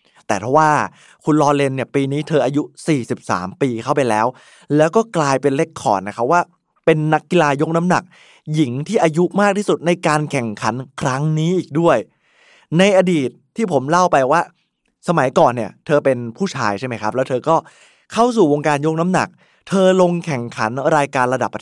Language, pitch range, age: Thai, 125-170 Hz, 20-39